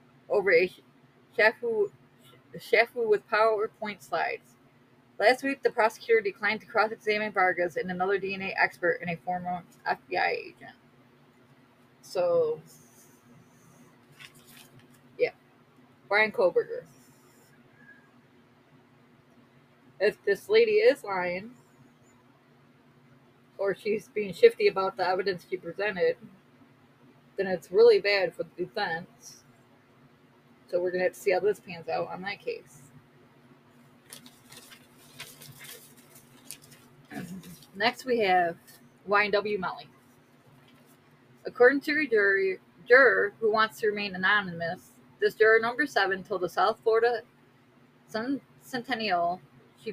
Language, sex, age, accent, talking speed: English, female, 20-39, American, 105 wpm